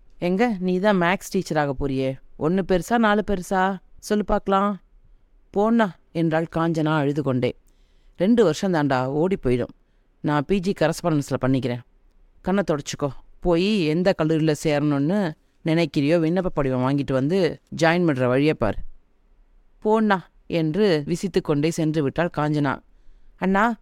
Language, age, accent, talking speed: Tamil, 30-49, native, 120 wpm